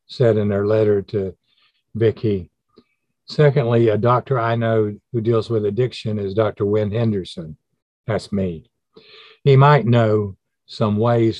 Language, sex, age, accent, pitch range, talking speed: English, male, 50-69, American, 95-115 Hz, 135 wpm